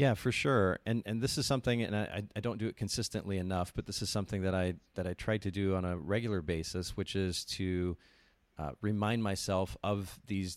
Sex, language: male, English